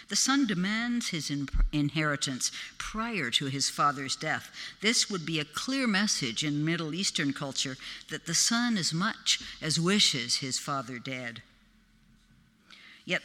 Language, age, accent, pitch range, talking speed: English, 60-79, American, 140-195 Hz, 140 wpm